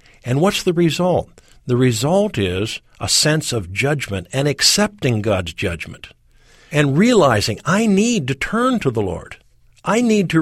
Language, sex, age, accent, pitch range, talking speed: English, male, 50-69, American, 110-165 Hz, 155 wpm